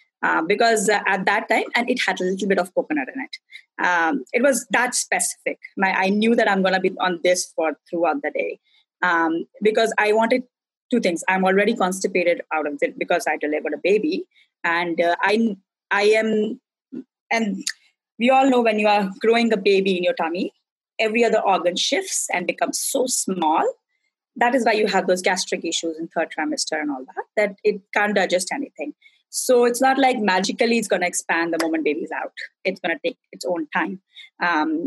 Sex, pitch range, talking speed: female, 180-240 Hz, 195 wpm